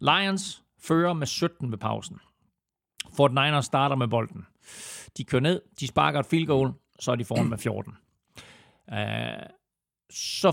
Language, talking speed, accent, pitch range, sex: Danish, 150 wpm, native, 120-155 Hz, male